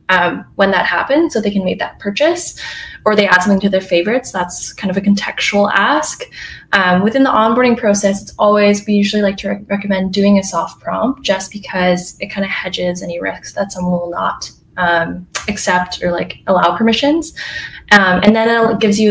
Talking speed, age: 200 wpm, 10-29